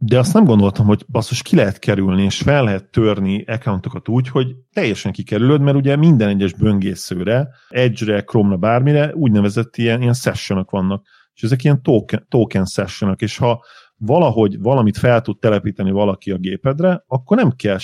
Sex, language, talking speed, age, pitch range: male, Hungarian, 170 wpm, 40-59, 100-120 Hz